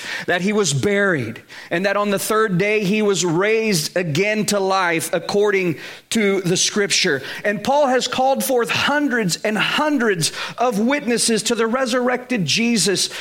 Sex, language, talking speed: male, English, 155 wpm